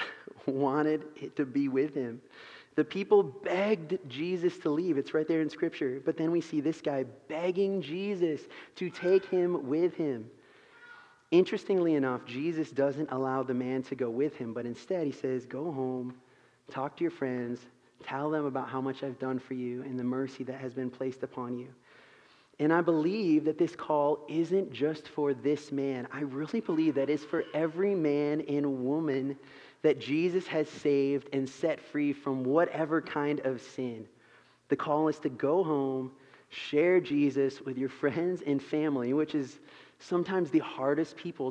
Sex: male